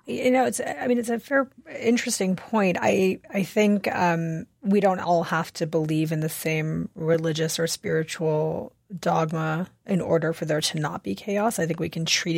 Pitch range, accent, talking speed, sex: 165-185 Hz, American, 195 wpm, female